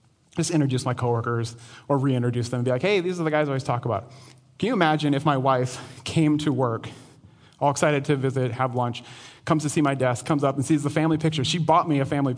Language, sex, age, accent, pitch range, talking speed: English, male, 30-49, American, 130-160 Hz, 245 wpm